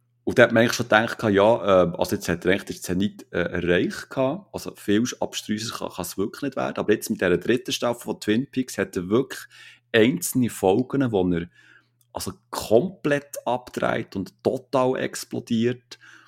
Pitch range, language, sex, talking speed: 105-125 Hz, German, male, 175 wpm